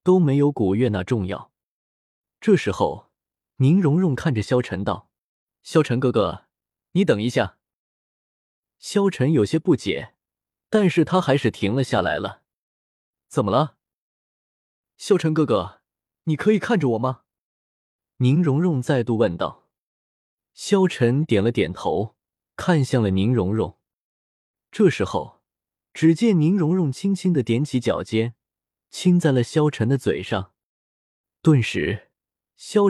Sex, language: male, Chinese